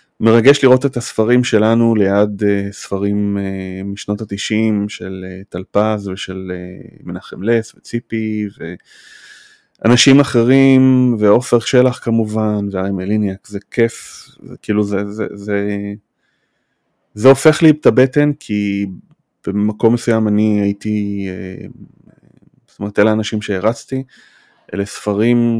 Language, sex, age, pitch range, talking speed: Hebrew, male, 30-49, 100-115 Hz, 110 wpm